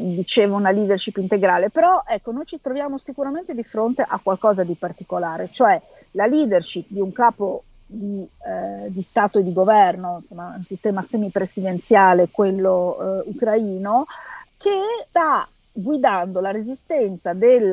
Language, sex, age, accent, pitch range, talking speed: Italian, female, 40-59, native, 185-230 Hz, 140 wpm